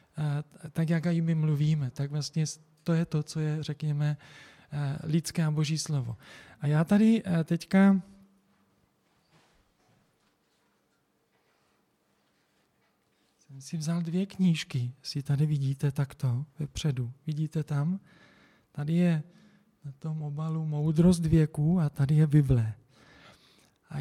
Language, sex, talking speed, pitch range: Czech, male, 115 wpm, 145-170 Hz